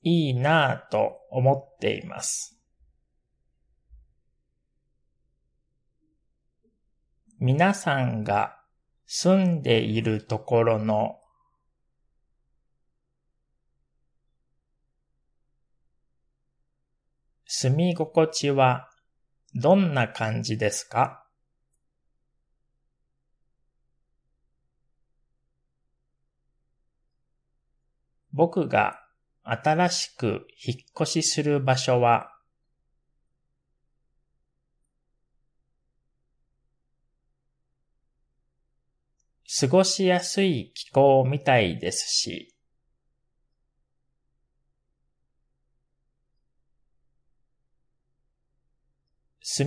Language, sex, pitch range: Japanese, male, 110-155 Hz